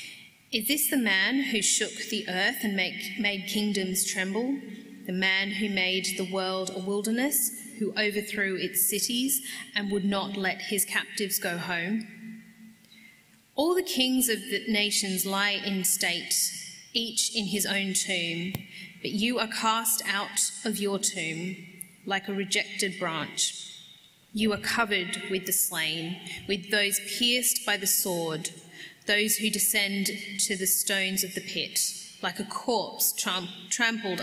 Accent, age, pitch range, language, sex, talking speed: Australian, 30-49, 185-215 Hz, English, female, 145 wpm